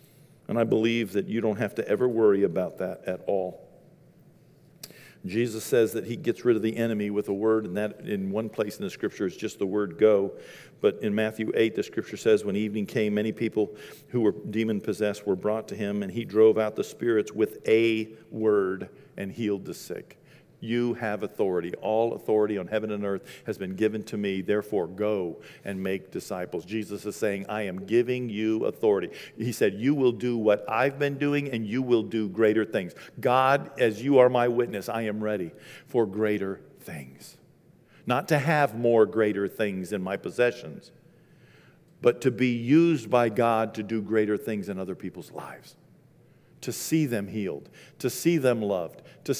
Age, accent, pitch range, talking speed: 50-69, American, 105-140 Hz, 190 wpm